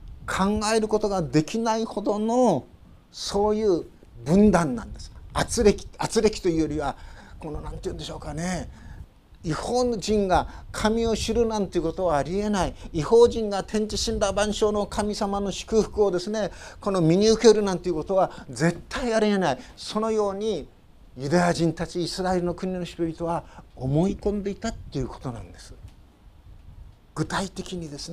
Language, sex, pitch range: Japanese, male, 150-195 Hz